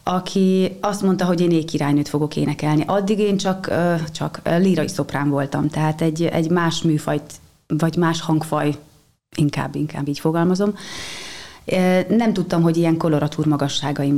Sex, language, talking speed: female, Hungarian, 140 wpm